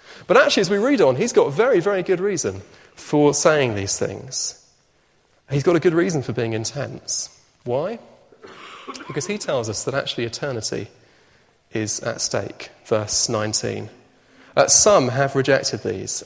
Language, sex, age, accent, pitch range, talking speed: English, male, 30-49, British, 110-155 Hz, 160 wpm